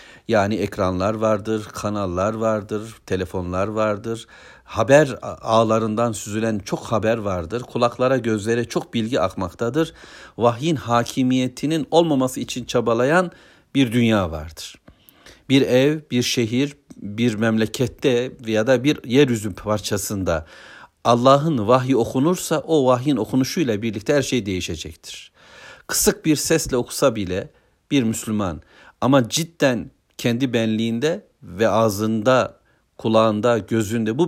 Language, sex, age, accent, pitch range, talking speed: Turkish, male, 60-79, native, 105-130 Hz, 110 wpm